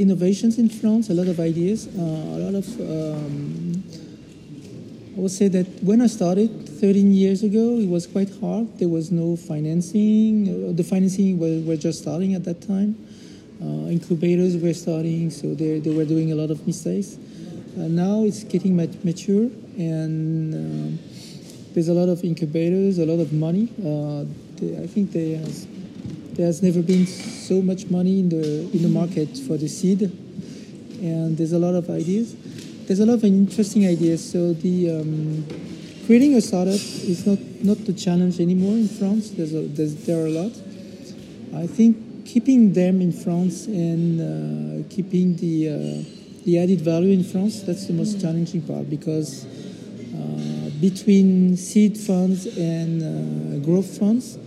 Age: 40-59